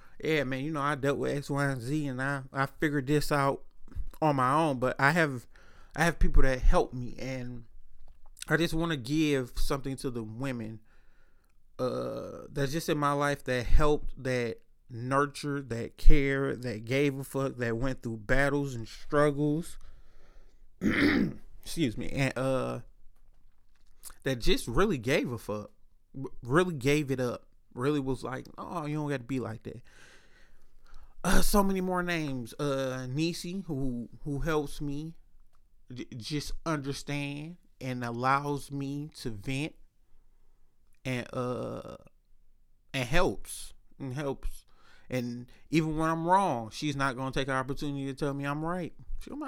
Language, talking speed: English, 155 wpm